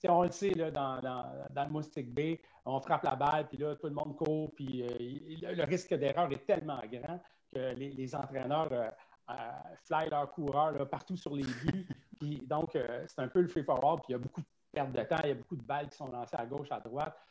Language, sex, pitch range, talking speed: French, male, 130-160 Hz, 255 wpm